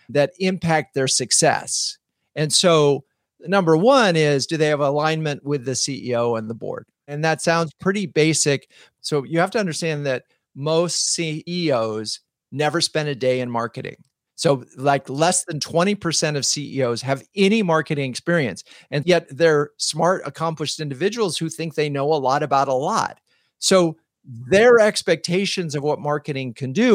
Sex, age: male, 40-59